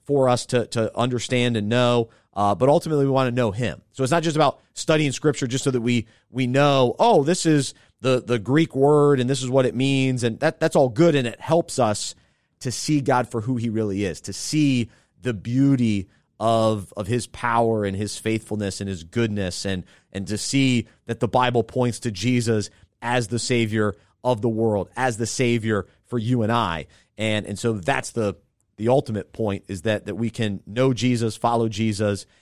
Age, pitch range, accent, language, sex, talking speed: 30-49, 105-130 Hz, American, English, male, 205 wpm